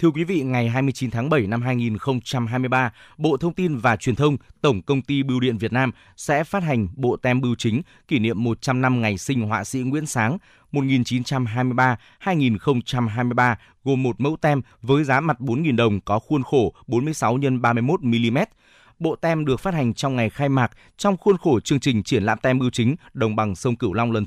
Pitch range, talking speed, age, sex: 120-145 Hz, 200 wpm, 20-39, male